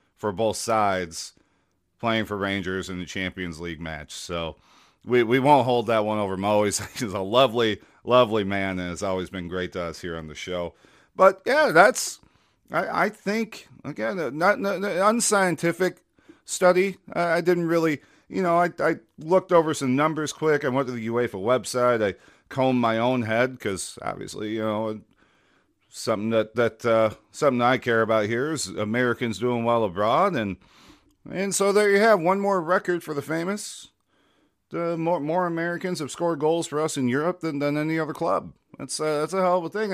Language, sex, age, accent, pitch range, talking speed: English, male, 40-59, American, 110-170 Hz, 190 wpm